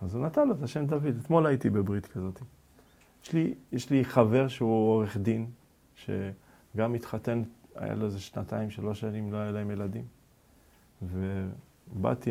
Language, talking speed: Hebrew, 155 wpm